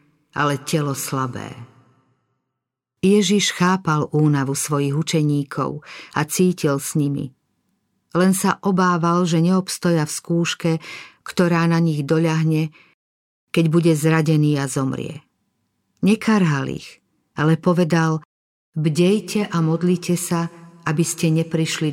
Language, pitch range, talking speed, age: Slovak, 150-175 Hz, 105 wpm, 50-69